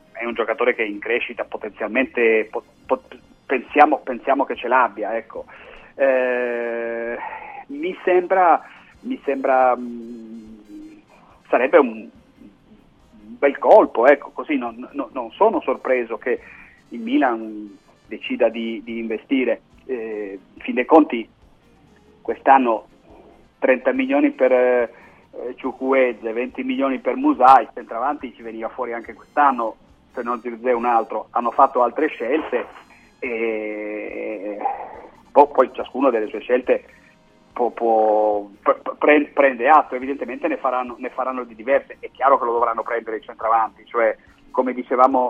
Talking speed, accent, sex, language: 130 wpm, native, male, Italian